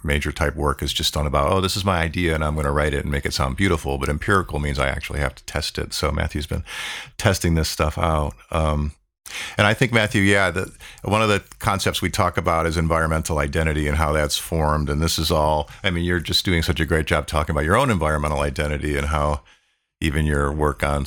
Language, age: English, 50-69